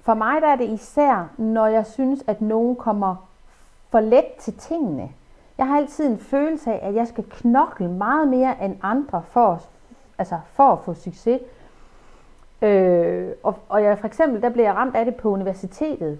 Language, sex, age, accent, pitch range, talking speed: Danish, female, 40-59, native, 190-265 Hz, 190 wpm